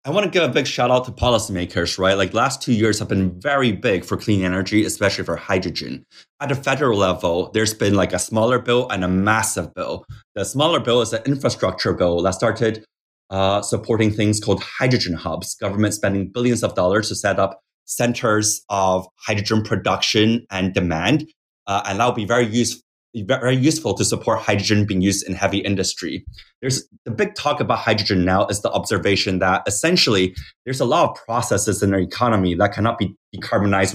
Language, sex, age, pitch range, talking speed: English, male, 20-39, 95-120 Hz, 190 wpm